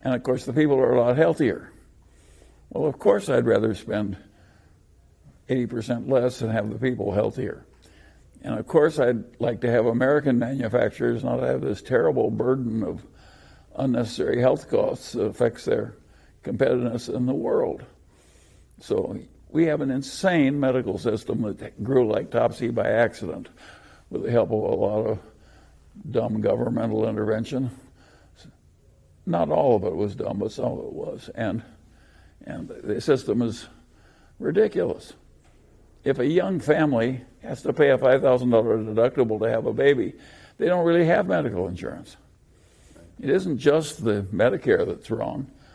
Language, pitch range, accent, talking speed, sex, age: English, 105-135 Hz, American, 150 wpm, male, 60-79